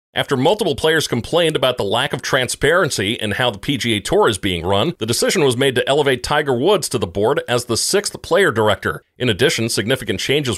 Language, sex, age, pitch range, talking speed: English, male, 40-59, 110-135 Hz, 210 wpm